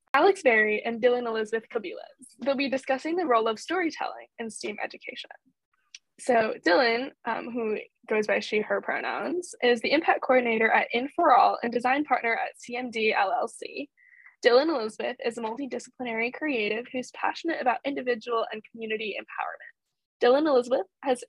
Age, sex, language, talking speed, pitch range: 10-29, female, English, 150 wpm, 220-270 Hz